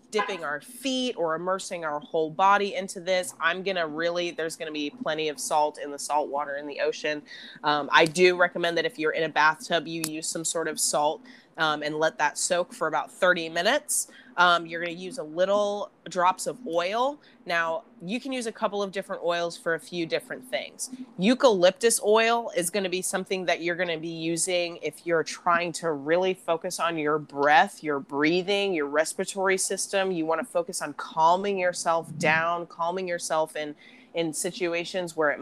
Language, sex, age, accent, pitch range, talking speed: English, female, 20-39, American, 160-200 Hz, 200 wpm